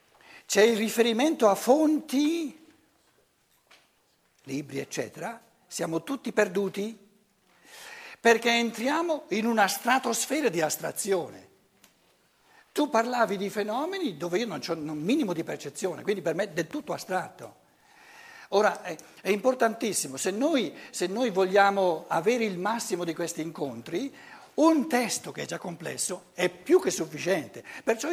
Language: Italian